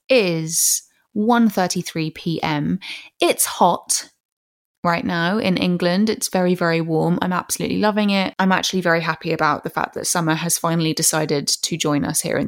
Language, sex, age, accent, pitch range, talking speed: English, female, 20-39, British, 165-200 Hz, 160 wpm